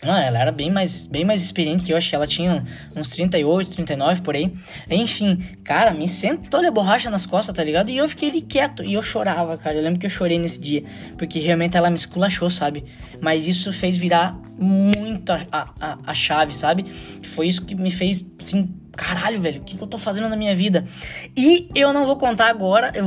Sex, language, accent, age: female, Portuguese, Brazilian, 10-29